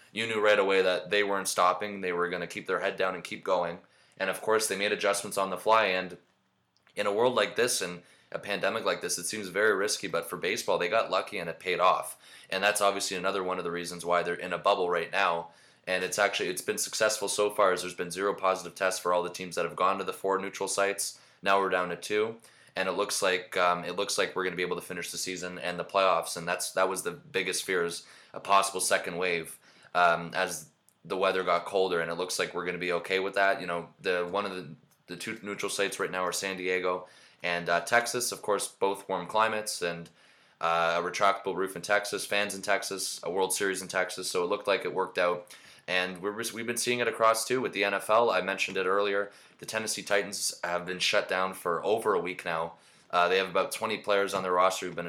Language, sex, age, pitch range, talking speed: English, male, 20-39, 90-100 Hz, 250 wpm